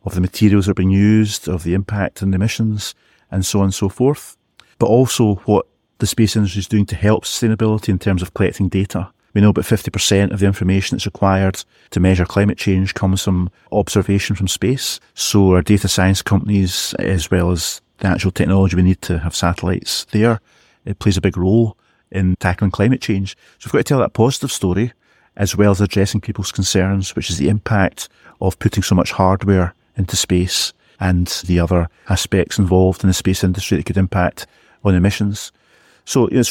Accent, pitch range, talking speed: British, 95-115 Hz, 195 wpm